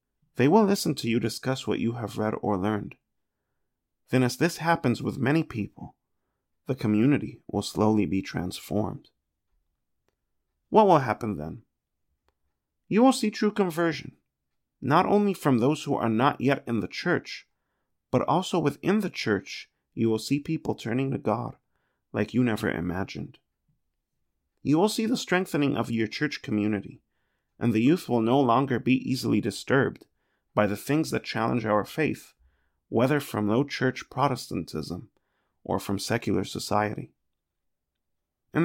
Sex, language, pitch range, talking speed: male, English, 95-140 Hz, 145 wpm